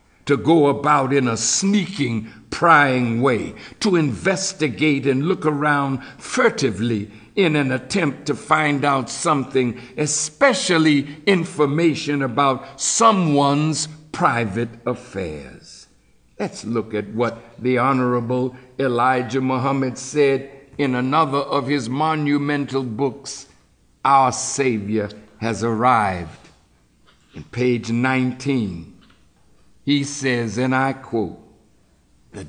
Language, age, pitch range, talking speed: English, 60-79, 125-190 Hz, 100 wpm